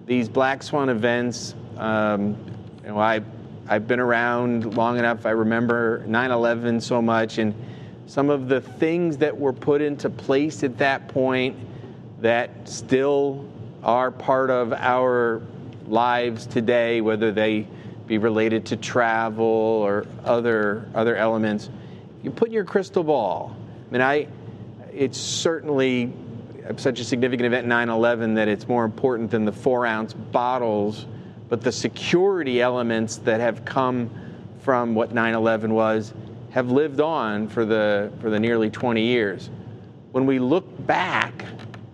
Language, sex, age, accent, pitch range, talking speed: English, male, 30-49, American, 110-130 Hz, 140 wpm